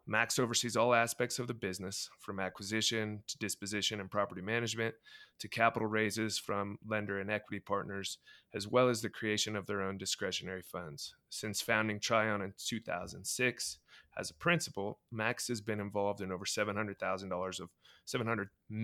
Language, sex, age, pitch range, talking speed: English, male, 30-49, 95-115 Hz, 155 wpm